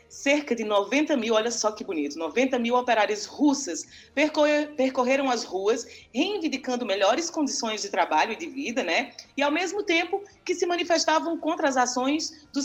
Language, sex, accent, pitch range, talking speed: Portuguese, female, Brazilian, 220-295 Hz, 165 wpm